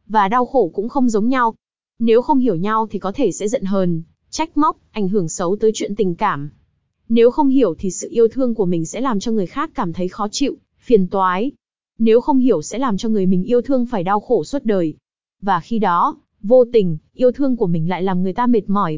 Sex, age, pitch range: female, 20-39, 190-245 Hz